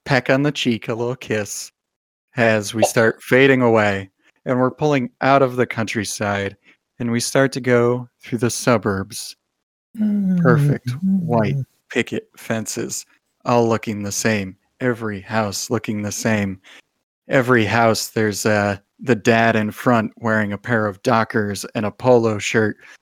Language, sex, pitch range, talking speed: English, male, 105-120 Hz, 150 wpm